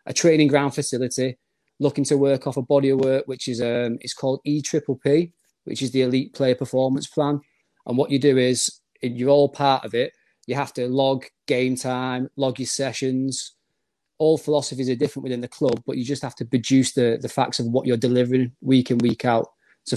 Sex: male